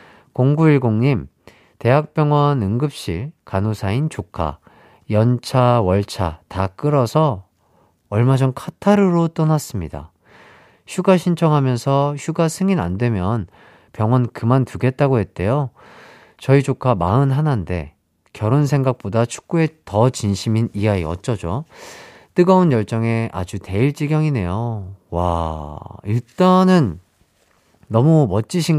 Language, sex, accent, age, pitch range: Korean, male, native, 40-59, 95-145 Hz